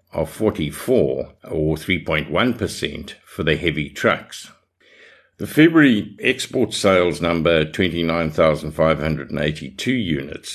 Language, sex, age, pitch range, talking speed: English, male, 60-79, 80-95 Hz, 85 wpm